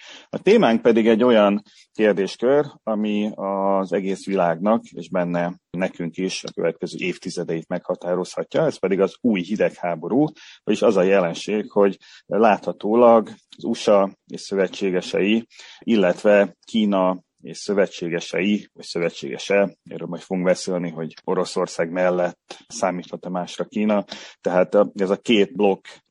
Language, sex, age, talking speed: Hungarian, male, 30-49, 125 wpm